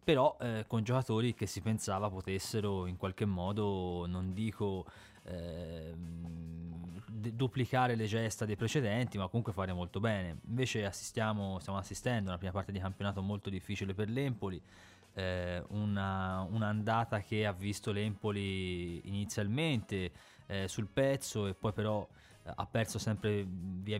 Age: 20-39